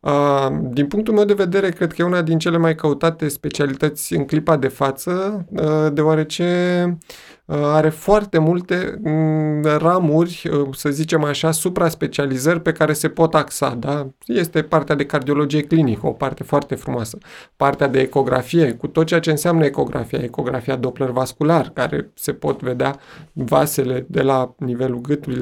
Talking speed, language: 150 wpm, Romanian